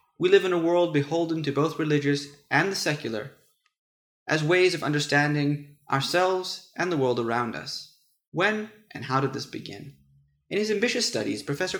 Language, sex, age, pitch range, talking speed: English, male, 30-49, 135-175 Hz, 170 wpm